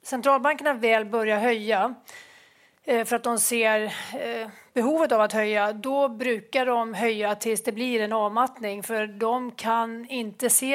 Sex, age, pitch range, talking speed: female, 30-49, 215-245 Hz, 145 wpm